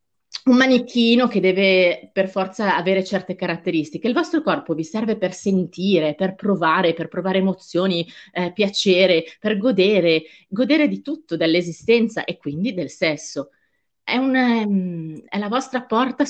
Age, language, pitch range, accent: 30-49, Italian, 155-210 Hz, native